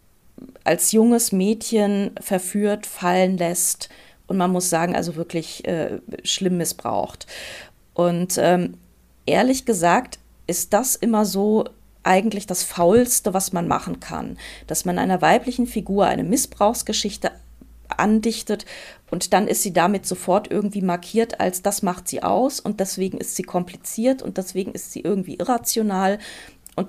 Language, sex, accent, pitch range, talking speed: German, female, German, 180-220 Hz, 140 wpm